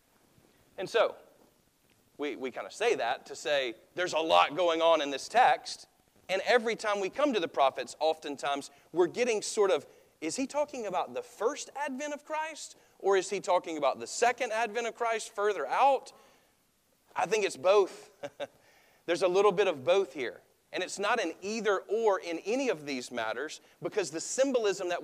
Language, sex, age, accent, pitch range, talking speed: English, male, 40-59, American, 160-255 Hz, 185 wpm